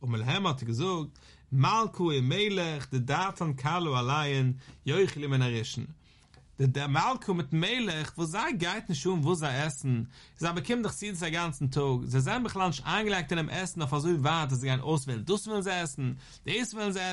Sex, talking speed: male, 55 wpm